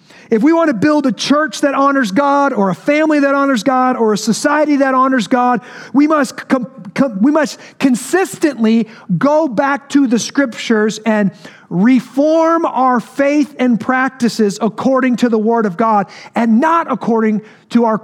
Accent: American